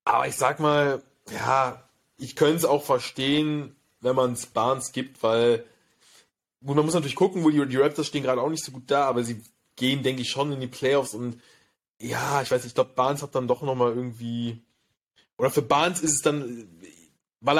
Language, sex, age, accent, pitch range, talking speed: German, male, 20-39, German, 120-150 Hz, 210 wpm